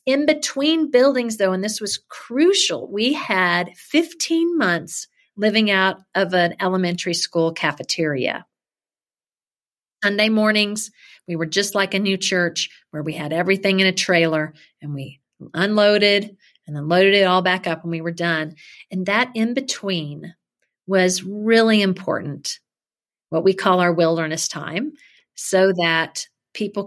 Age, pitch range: 40-59, 175-215 Hz